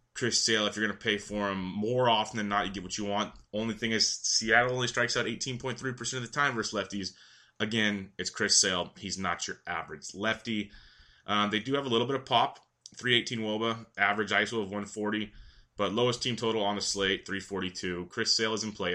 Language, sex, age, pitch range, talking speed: English, male, 20-39, 100-115 Hz, 215 wpm